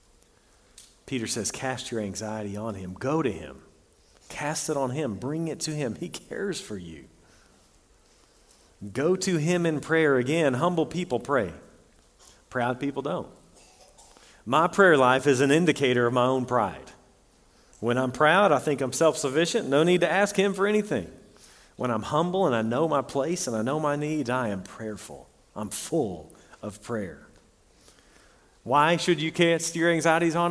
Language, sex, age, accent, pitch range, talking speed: English, male, 40-59, American, 115-170 Hz, 165 wpm